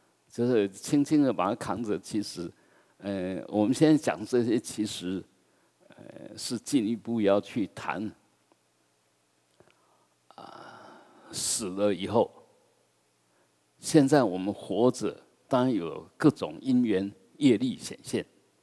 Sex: male